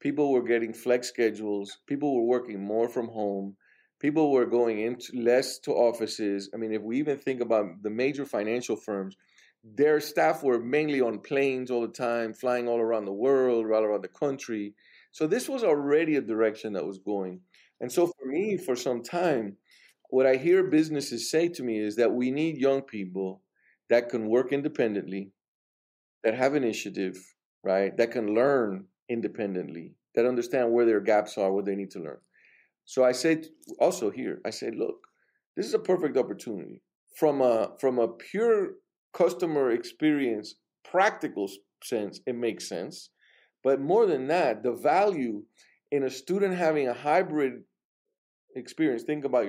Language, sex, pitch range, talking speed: English, male, 110-155 Hz, 170 wpm